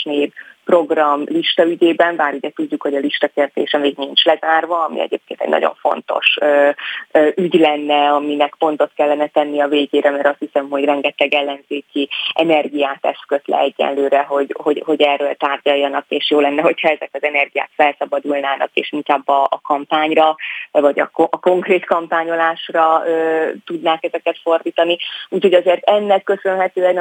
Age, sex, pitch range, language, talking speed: 20-39, female, 145-170 Hz, Hungarian, 145 wpm